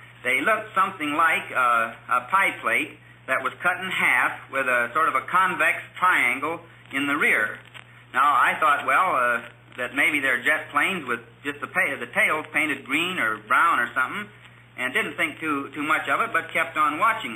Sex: male